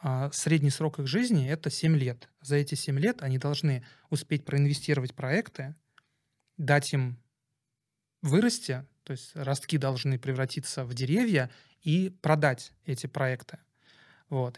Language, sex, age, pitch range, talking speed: Russian, male, 30-49, 130-155 Hz, 130 wpm